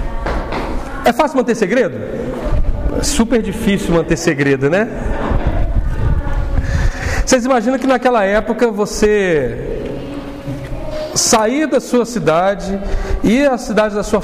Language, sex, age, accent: Portuguese, male, 40-59, Brazilian